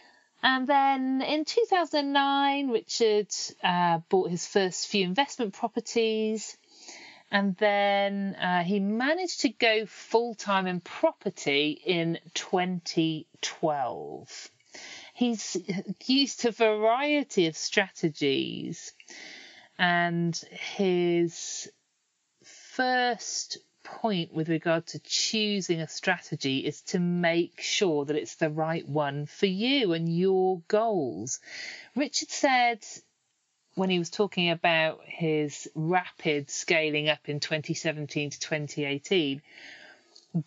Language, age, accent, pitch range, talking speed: English, 40-59, British, 160-225 Hz, 105 wpm